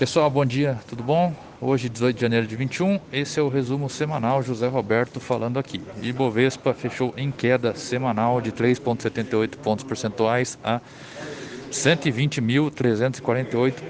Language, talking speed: Portuguese, 135 wpm